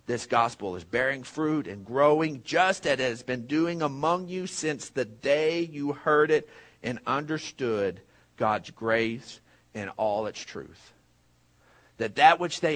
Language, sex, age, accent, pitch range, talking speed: English, male, 50-69, American, 120-180 Hz, 155 wpm